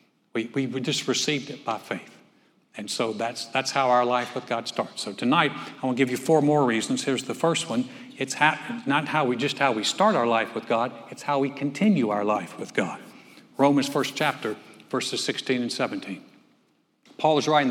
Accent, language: American, English